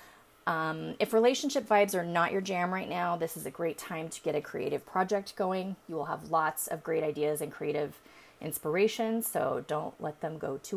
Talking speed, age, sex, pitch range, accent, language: 205 wpm, 30-49, female, 155-220 Hz, American, English